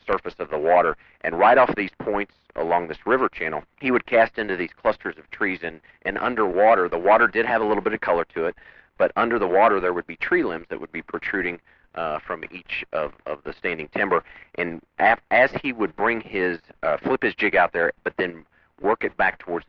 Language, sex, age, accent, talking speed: English, male, 40-59, American, 225 wpm